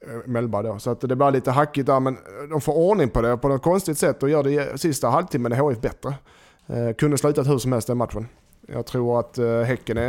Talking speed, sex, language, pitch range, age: 230 wpm, male, Swedish, 115-140 Hz, 30-49